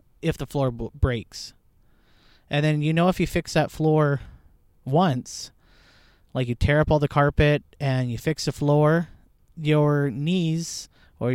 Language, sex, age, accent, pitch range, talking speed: English, male, 30-49, American, 125-160 Hz, 155 wpm